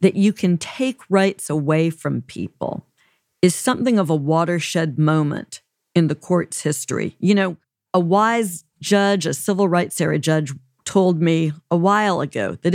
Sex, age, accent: female, 50-69, American